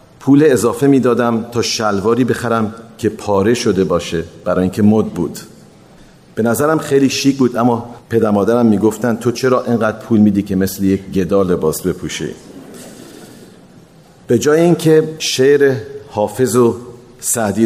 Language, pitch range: Persian, 100-125 Hz